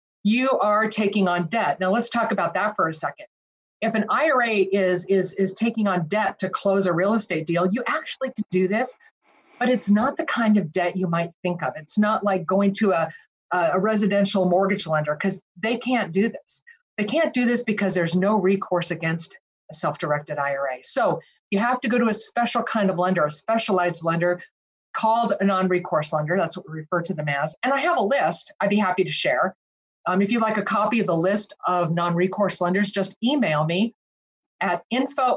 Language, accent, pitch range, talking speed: English, American, 180-230 Hz, 210 wpm